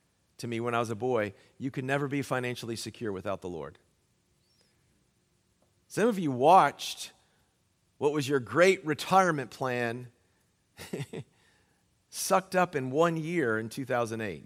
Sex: male